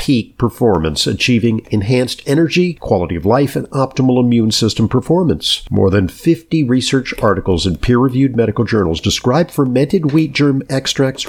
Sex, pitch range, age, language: male, 105-145 Hz, 50-69, English